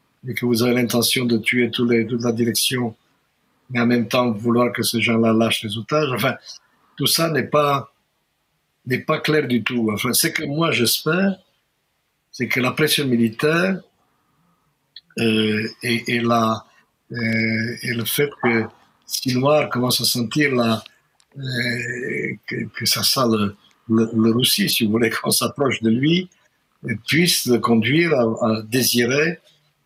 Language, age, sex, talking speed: Italian, 60-79, male, 165 wpm